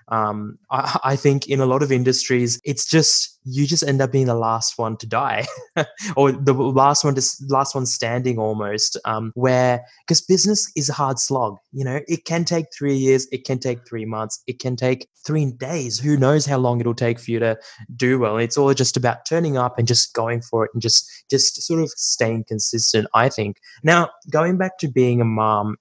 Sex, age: male, 20-39